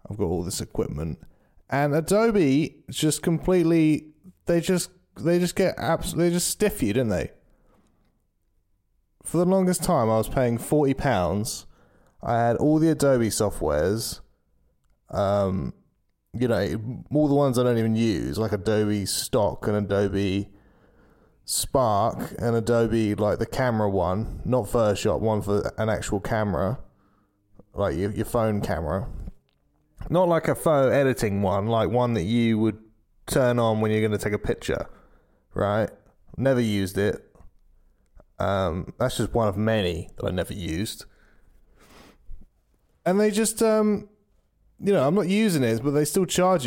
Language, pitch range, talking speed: English, 105-160 Hz, 150 wpm